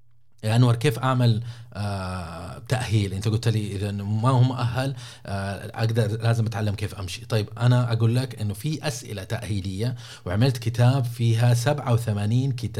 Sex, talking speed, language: male, 135 wpm, Arabic